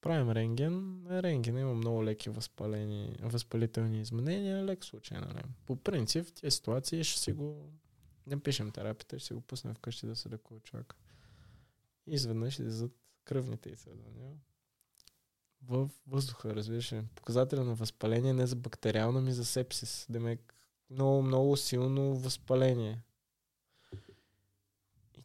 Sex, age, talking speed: male, 20-39, 130 wpm